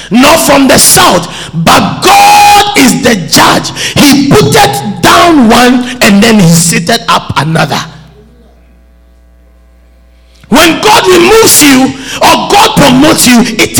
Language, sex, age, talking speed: English, male, 50-69, 125 wpm